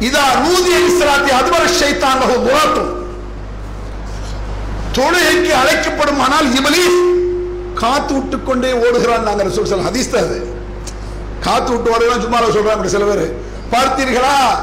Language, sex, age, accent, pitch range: English, male, 50-69, Indian, 205-295 Hz